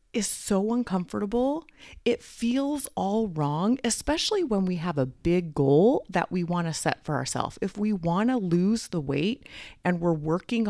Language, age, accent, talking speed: English, 30-49, American, 175 wpm